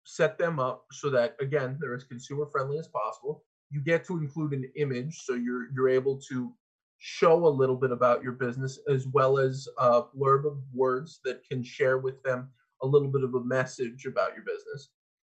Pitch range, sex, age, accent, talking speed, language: 130-160 Hz, male, 20-39, American, 200 wpm, English